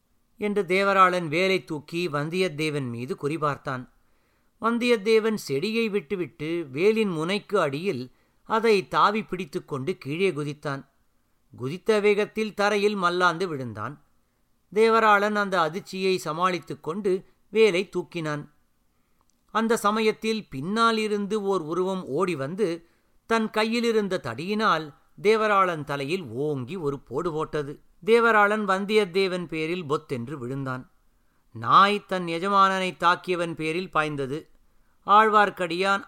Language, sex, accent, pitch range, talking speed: Tamil, male, native, 150-205 Hz, 95 wpm